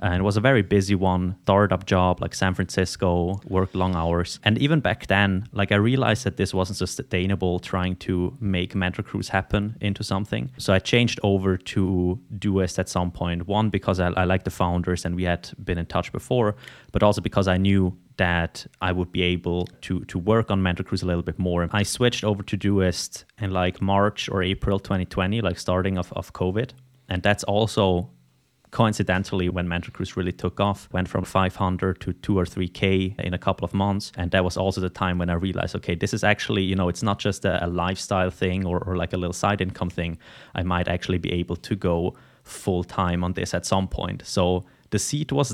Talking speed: 215 wpm